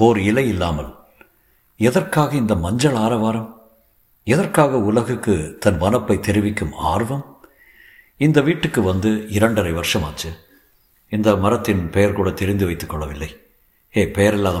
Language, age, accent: Tamil, 60-79, native